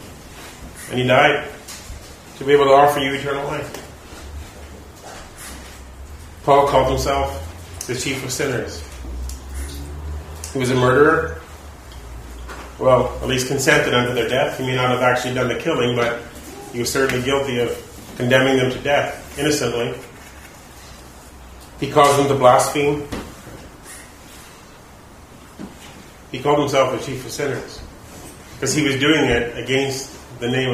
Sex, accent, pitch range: male, American, 90-140 Hz